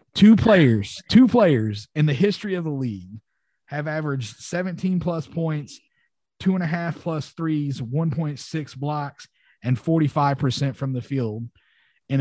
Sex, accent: male, American